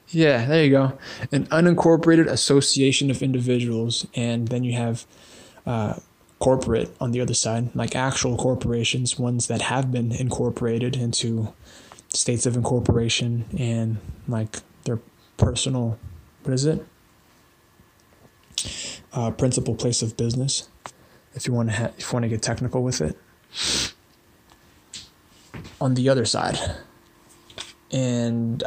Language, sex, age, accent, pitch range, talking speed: English, male, 20-39, American, 115-135 Hz, 130 wpm